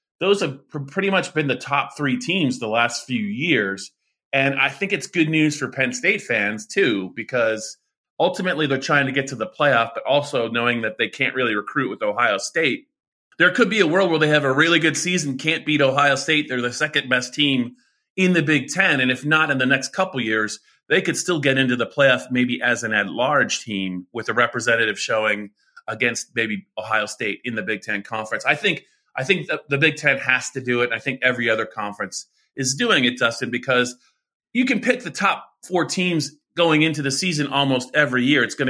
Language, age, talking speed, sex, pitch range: English, 30-49, 215 wpm, male, 125-155 Hz